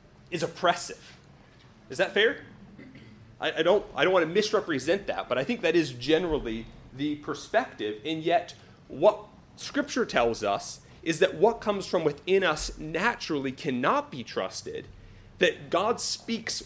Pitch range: 140-230 Hz